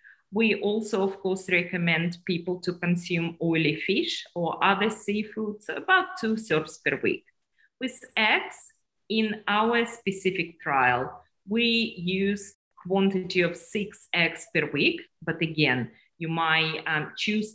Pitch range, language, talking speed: 155-200 Hz, English, 135 wpm